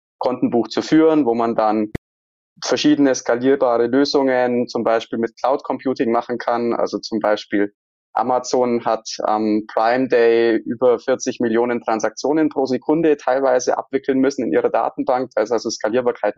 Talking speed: 145 wpm